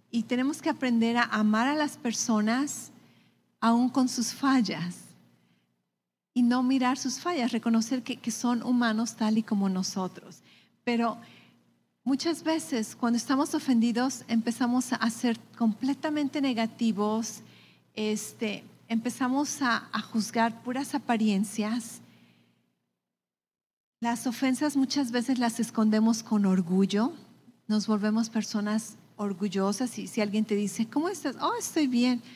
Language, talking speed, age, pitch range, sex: English, 125 wpm, 40-59, 215-255 Hz, female